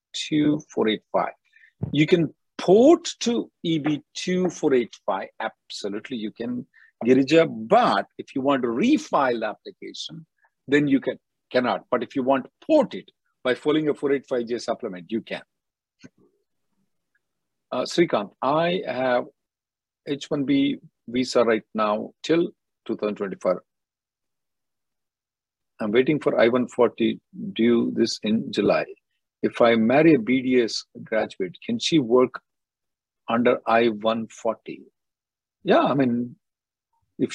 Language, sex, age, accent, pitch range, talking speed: English, male, 50-69, Indian, 120-180 Hz, 115 wpm